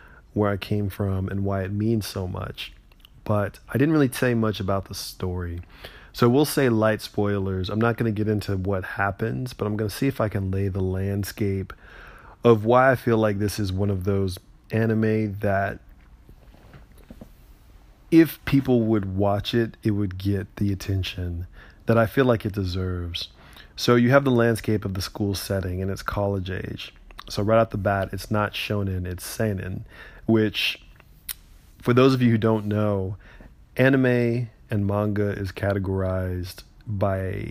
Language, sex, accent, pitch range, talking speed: English, male, American, 95-110 Hz, 175 wpm